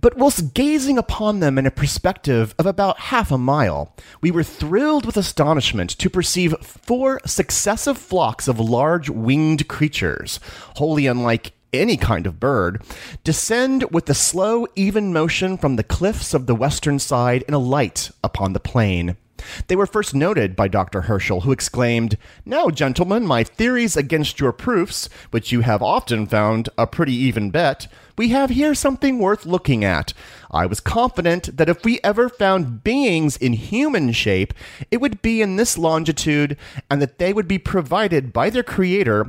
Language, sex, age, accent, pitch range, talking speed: English, male, 30-49, American, 115-190 Hz, 170 wpm